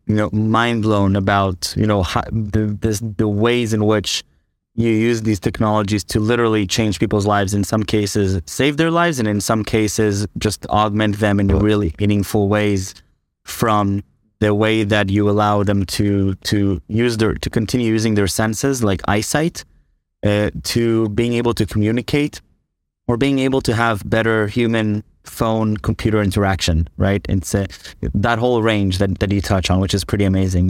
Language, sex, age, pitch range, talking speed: English, male, 20-39, 100-115 Hz, 170 wpm